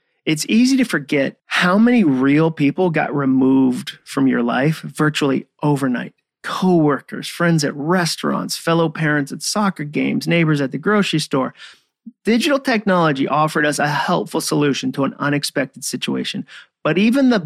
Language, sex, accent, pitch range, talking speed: English, male, American, 140-195 Hz, 150 wpm